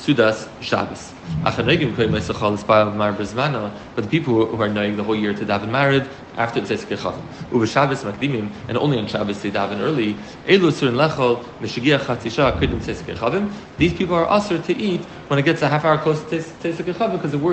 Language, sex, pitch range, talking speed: English, male, 110-155 Hz, 180 wpm